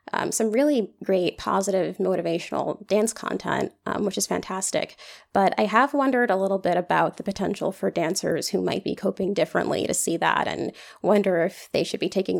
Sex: female